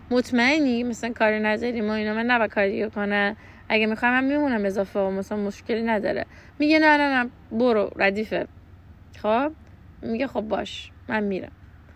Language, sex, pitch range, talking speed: Persian, female, 180-225 Hz, 160 wpm